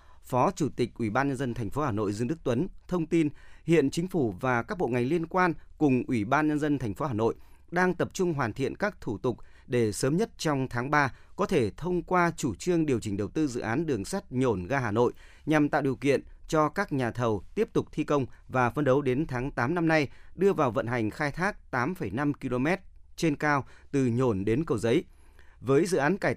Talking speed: 240 wpm